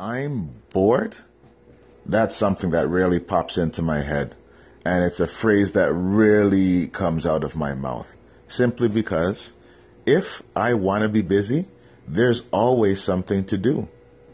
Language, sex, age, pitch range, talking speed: English, male, 30-49, 85-115 Hz, 140 wpm